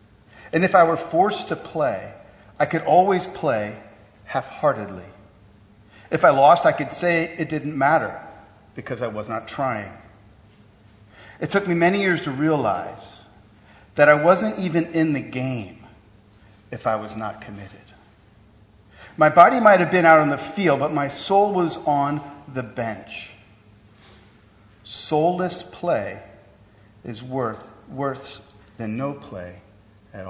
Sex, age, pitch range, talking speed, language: male, 40-59, 105-155 Hz, 135 wpm, English